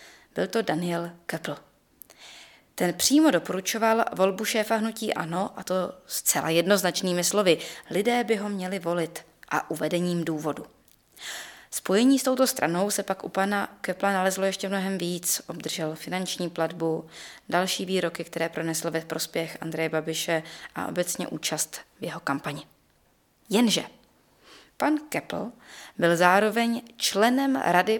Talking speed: 130 wpm